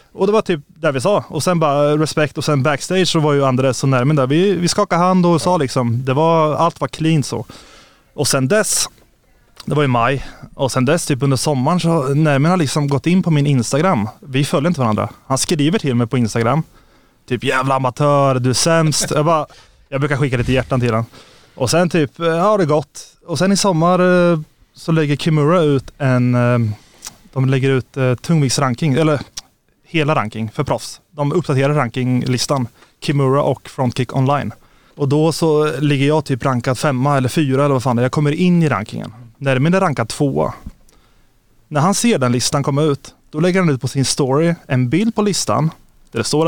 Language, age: Swedish, 20-39